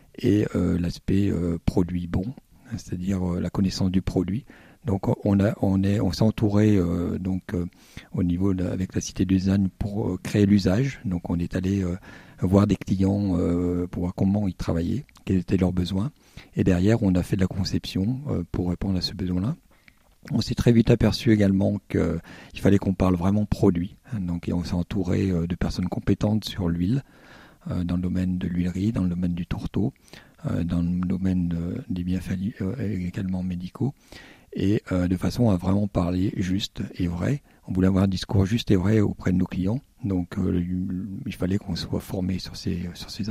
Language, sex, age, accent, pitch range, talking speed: French, male, 50-69, French, 90-100 Hz, 190 wpm